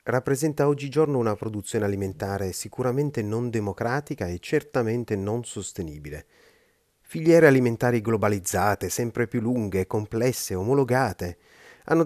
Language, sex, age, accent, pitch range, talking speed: Italian, male, 30-49, native, 100-135 Hz, 105 wpm